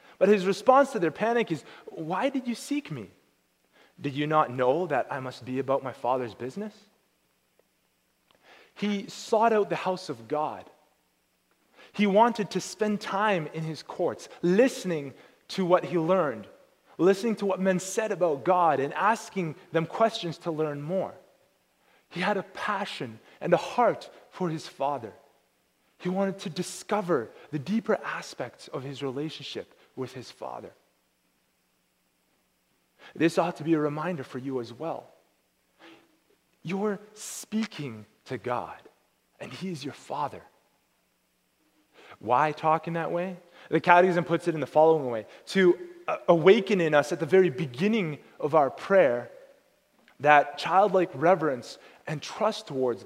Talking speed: 145 wpm